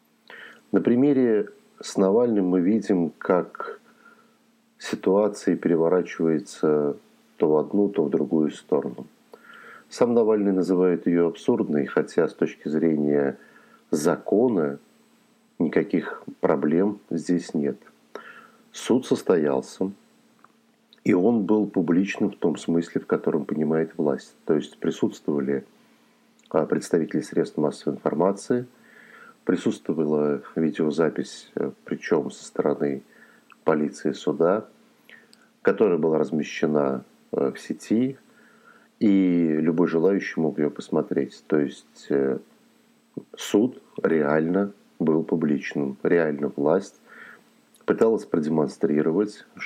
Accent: native